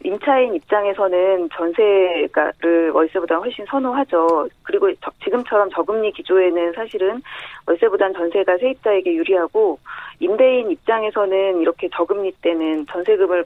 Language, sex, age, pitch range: Korean, female, 30-49, 175-275 Hz